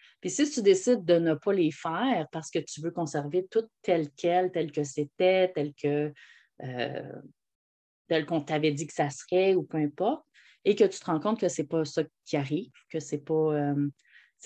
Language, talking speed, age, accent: French, 210 wpm, 30-49, Canadian